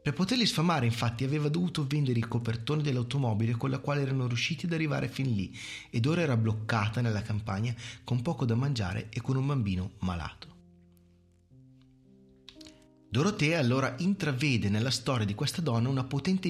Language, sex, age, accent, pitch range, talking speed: Italian, male, 30-49, native, 110-140 Hz, 160 wpm